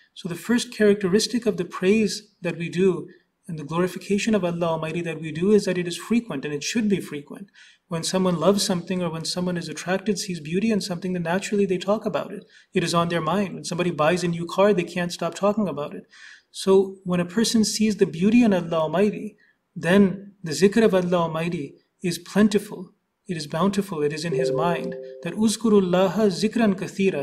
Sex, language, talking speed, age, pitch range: male, English, 210 wpm, 30-49, 170-205 Hz